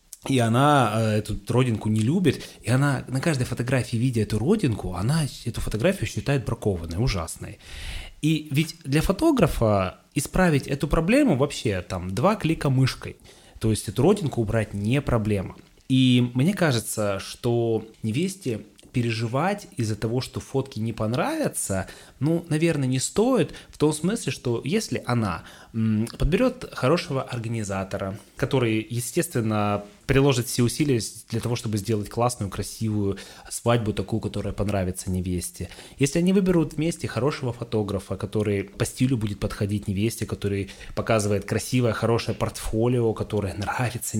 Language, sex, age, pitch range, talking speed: Russian, male, 20-39, 105-135 Hz, 135 wpm